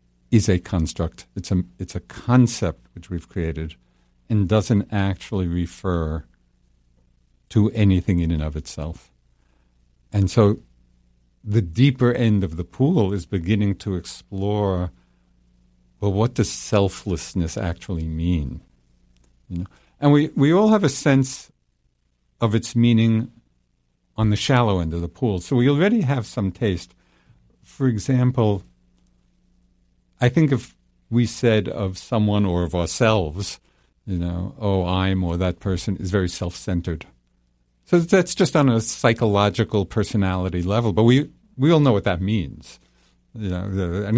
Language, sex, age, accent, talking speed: English, male, 50-69, American, 140 wpm